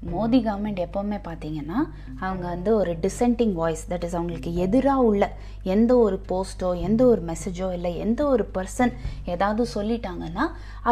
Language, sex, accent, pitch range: Tamil, female, native, 170-230 Hz